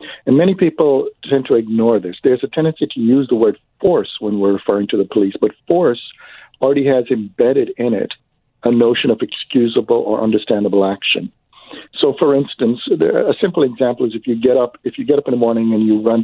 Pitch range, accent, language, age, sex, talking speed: 110-150 Hz, American, English, 50-69, male, 205 wpm